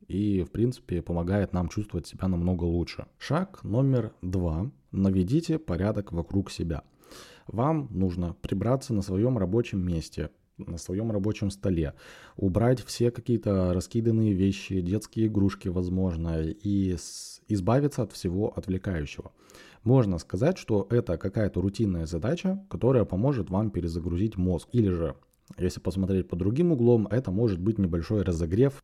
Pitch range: 90-115 Hz